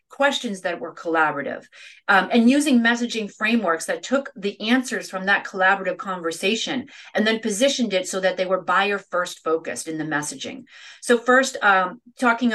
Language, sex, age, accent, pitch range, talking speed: English, female, 30-49, American, 180-225 Hz, 165 wpm